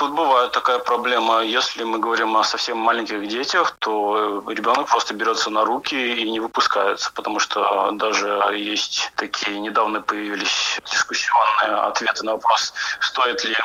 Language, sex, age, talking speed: Russian, male, 20-39, 145 wpm